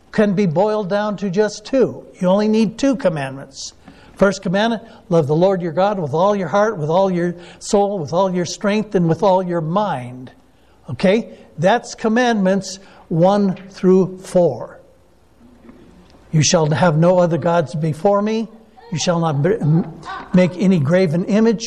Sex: male